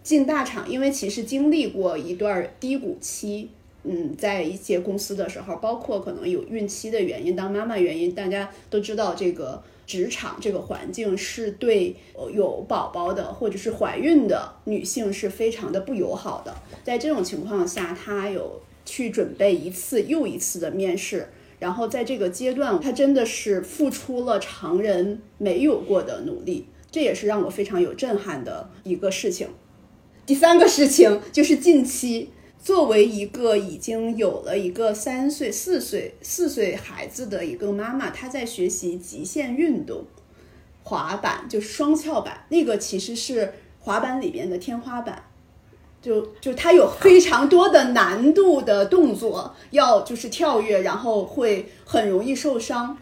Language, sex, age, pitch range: Chinese, female, 30-49, 200-305 Hz